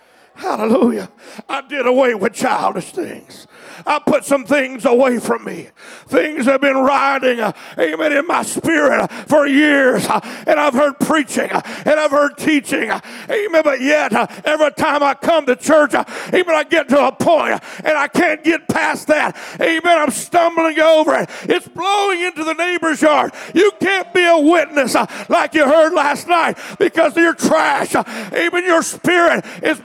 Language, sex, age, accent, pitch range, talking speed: English, male, 50-69, American, 290-345 Hz, 185 wpm